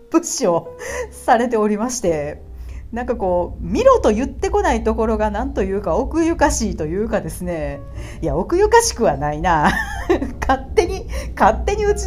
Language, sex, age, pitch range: Japanese, female, 40-59, 195-290 Hz